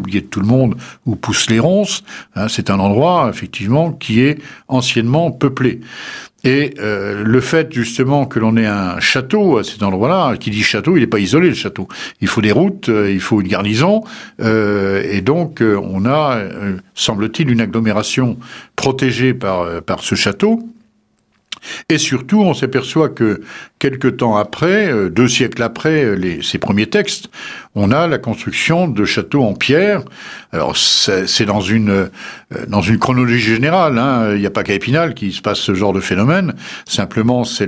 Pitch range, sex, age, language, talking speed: 100-145 Hz, male, 60-79, French, 170 wpm